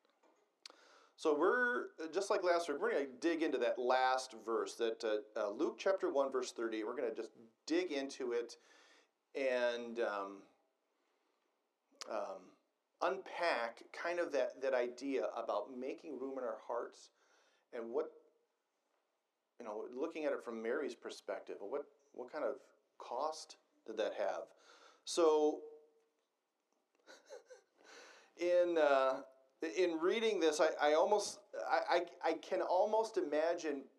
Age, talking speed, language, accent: 40-59, 135 wpm, English, American